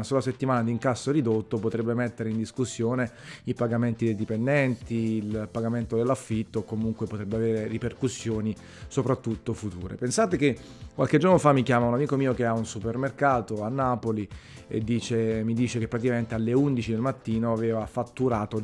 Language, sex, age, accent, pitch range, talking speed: Italian, male, 30-49, native, 115-135 Hz, 160 wpm